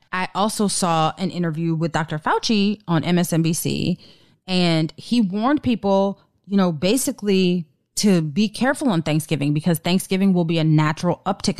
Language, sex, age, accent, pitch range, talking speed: English, female, 30-49, American, 155-205 Hz, 150 wpm